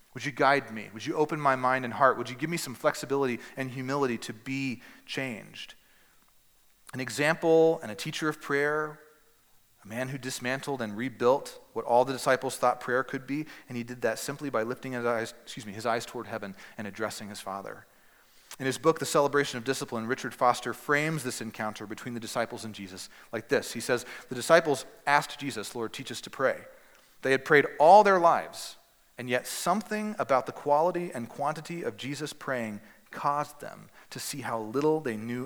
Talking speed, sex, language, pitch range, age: 200 wpm, male, English, 110-140 Hz, 30-49